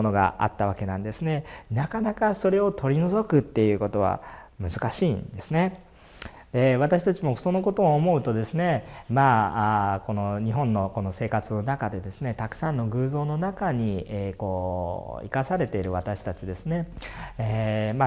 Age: 40-59